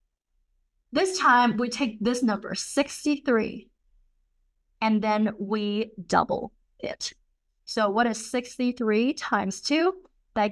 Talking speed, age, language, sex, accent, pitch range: 110 wpm, 20-39, English, female, American, 200-250 Hz